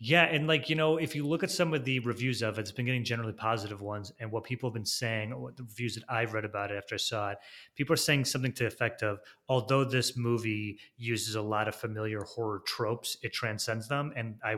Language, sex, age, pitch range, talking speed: English, male, 30-49, 110-130 Hz, 255 wpm